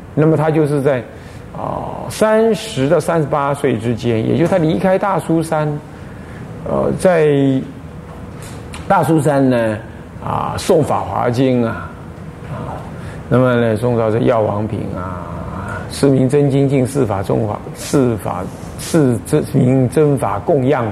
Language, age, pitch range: Chinese, 50-69, 110-150 Hz